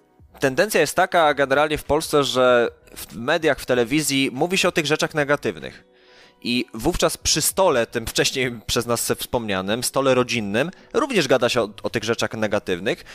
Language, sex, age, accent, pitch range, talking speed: Polish, male, 20-39, native, 105-150 Hz, 165 wpm